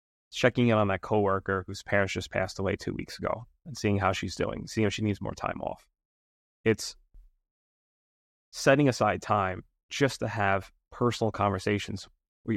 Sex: male